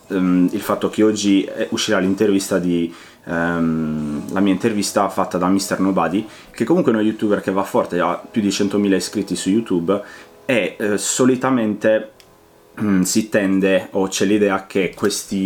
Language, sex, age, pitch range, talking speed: Italian, male, 30-49, 90-105 Hz, 160 wpm